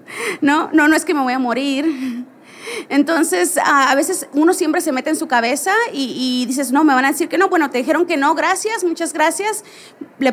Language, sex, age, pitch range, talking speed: English, female, 30-49, 245-310 Hz, 220 wpm